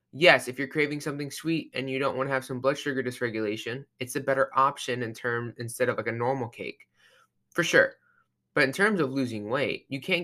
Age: 20-39